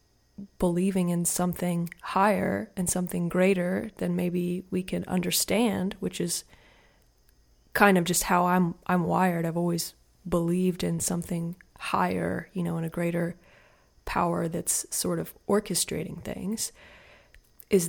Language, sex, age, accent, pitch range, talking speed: English, female, 20-39, American, 170-190 Hz, 130 wpm